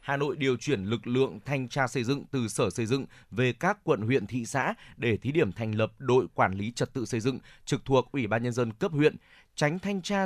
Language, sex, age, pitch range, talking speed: Vietnamese, male, 20-39, 120-145 Hz, 250 wpm